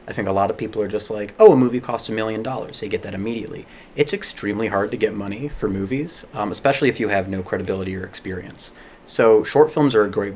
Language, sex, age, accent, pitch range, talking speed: English, male, 30-49, American, 90-105 Hz, 250 wpm